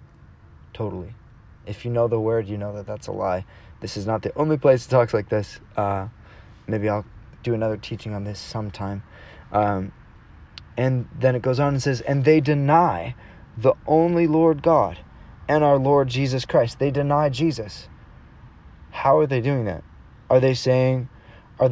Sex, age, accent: male, 20-39, American